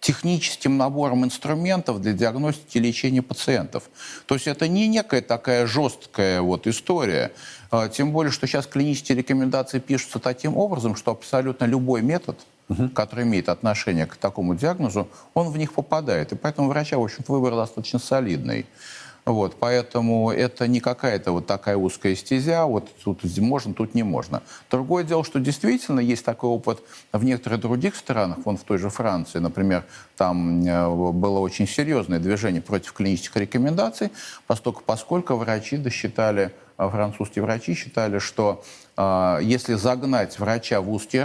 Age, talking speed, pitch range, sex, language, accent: 50-69, 145 wpm, 105-135 Hz, male, Russian, native